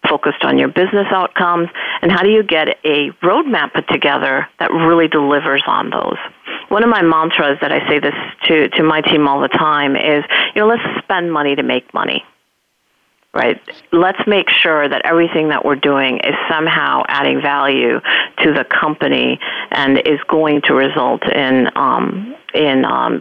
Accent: American